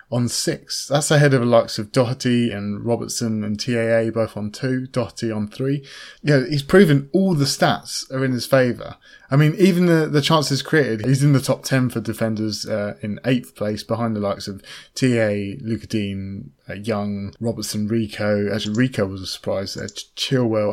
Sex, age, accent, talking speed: male, 20-39, British, 190 wpm